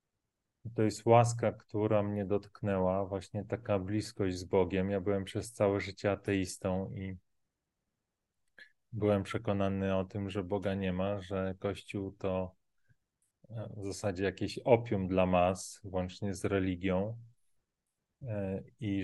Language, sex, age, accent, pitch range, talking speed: Polish, male, 30-49, native, 95-110 Hz, 125 wpm